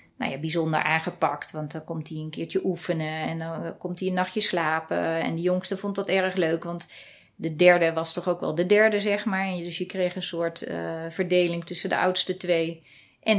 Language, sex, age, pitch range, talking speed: Dutch, female, 30-49, 170-195 Hz, 215 wpm